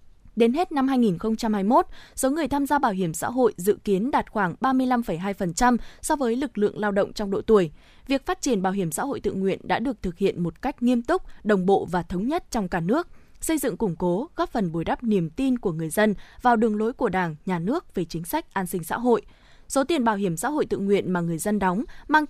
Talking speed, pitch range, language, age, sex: 245 wpm, 190-260 Hz, Vietnamese, 20-39, female